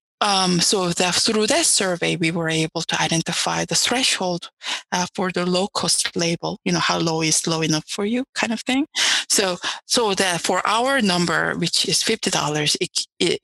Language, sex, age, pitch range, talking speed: English, female, 20-39, 165-195 Hz, 190 wpm